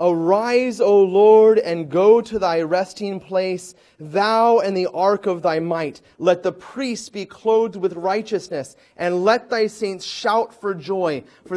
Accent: American